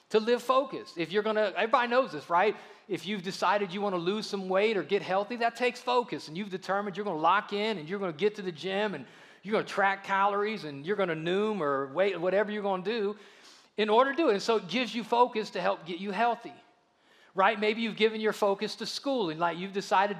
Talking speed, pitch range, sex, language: 245 wpm, 205-240 Hz, male, English